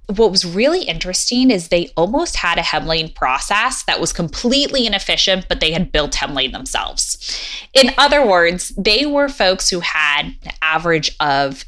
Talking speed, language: 165 wpm, English